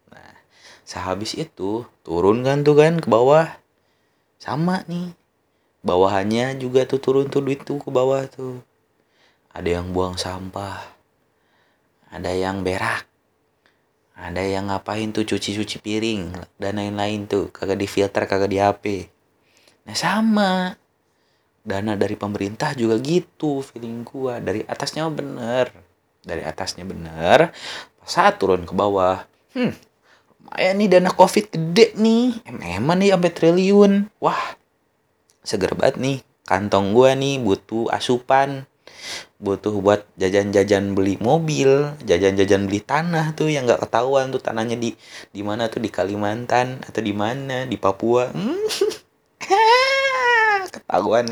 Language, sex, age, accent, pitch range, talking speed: Indonesian, male, 30-49, native, 100-150 Hz, 125 wpm